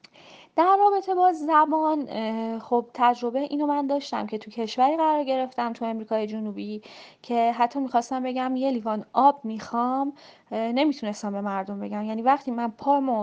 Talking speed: 150 wpm